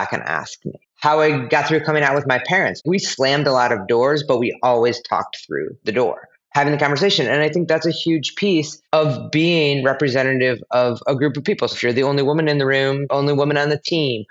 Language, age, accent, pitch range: English, 30-49, American, 130-160 Hz